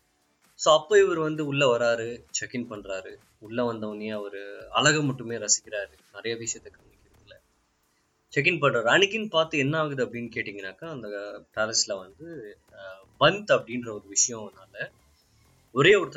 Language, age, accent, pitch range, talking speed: Tamil, 20-39, native, 100-130 Hz, 135 wpm